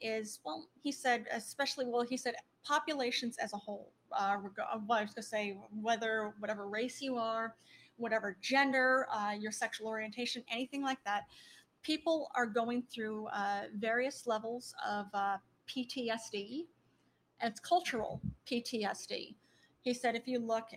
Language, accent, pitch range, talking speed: English, American, 215-270 Hz, 140 wpm